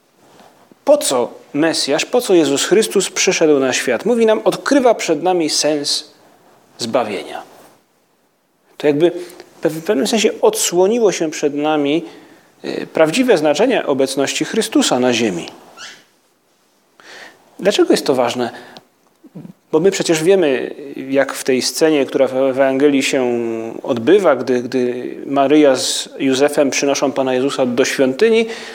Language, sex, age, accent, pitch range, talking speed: Polish, male, 40-59, native, 135-195 Hz, 125 wpm